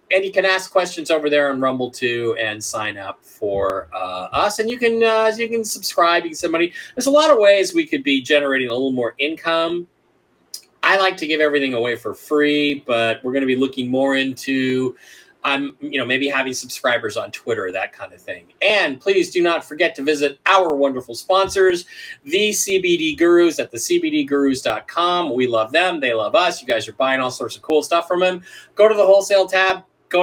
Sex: male